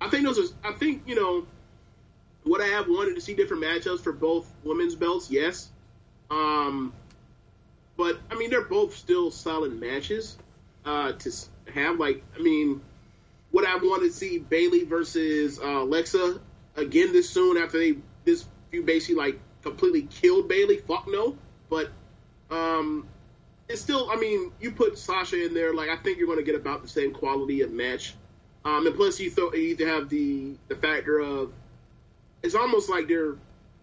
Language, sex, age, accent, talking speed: English, male, 30-49, American, 170 wpm